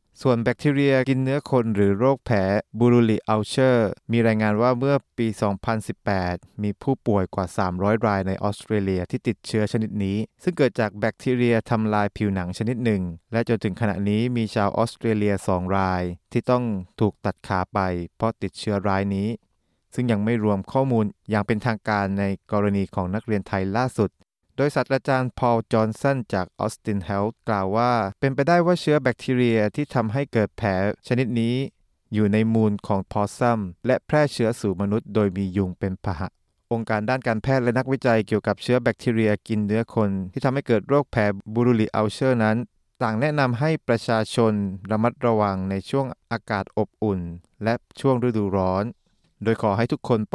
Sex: male